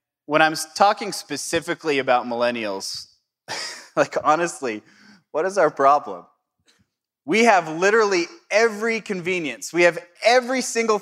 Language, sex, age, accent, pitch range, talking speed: English, male, 20-39, American, 140-190 Hz, 115 wpm